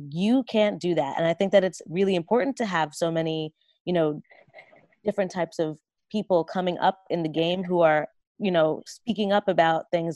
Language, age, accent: English, 20-39, American